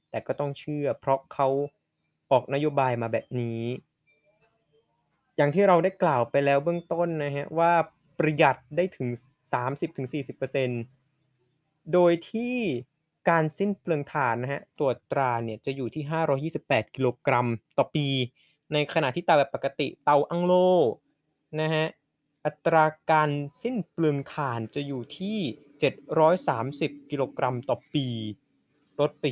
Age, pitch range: 20-39, 135-165 Hz